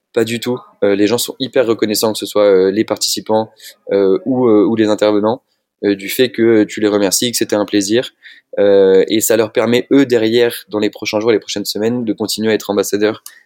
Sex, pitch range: male, 95-115 Hz